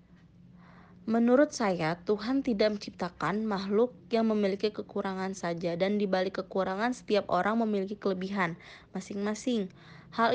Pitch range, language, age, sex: 185-225 Hz, Indonesian, 20-39, female